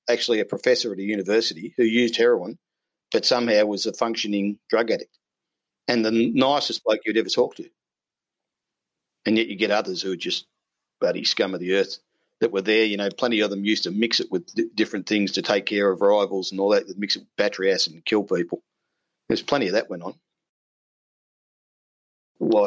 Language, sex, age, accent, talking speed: English, male, 50-69, Australian, 200 wpm